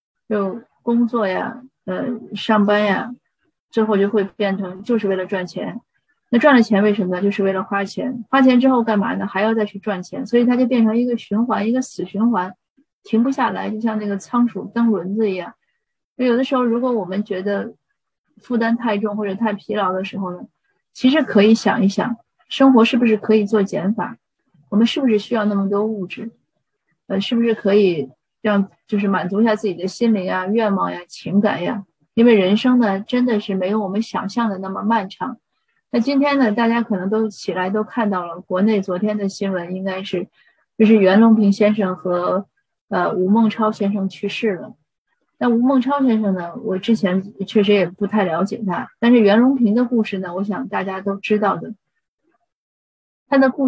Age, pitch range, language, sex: 30-49, 195-235 Hz, Chinese, female